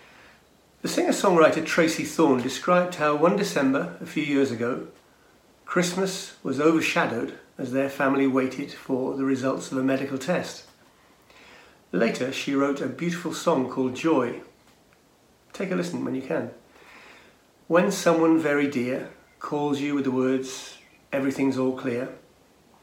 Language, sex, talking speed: English, male, 135 wpm